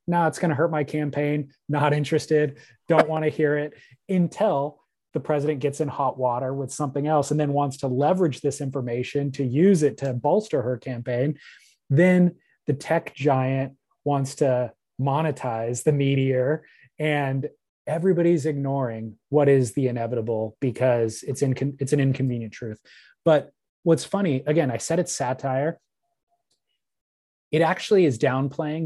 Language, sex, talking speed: English, male, 150 wpm